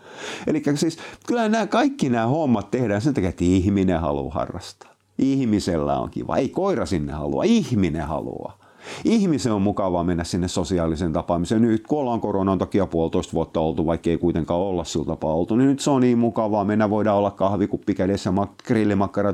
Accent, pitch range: native, 85-115 Hz